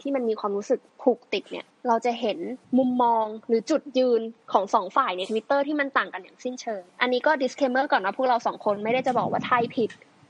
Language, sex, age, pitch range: Thai, female, 20-39, 220-265 Hz